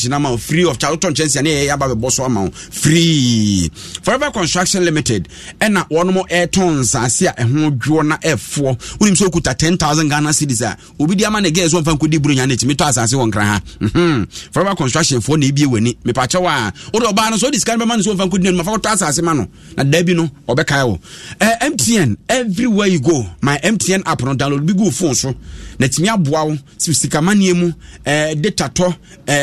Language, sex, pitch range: English, male, 140-185 Hz